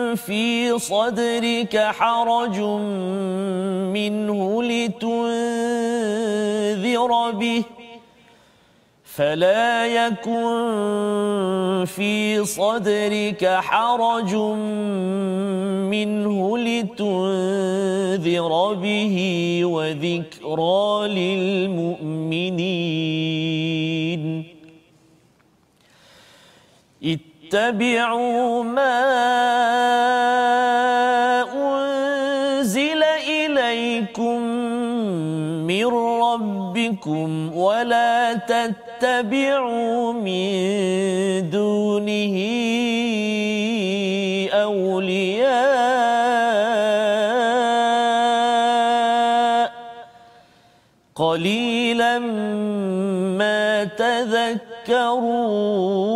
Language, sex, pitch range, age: Malayalam, male, 190-235 Hz, 40-59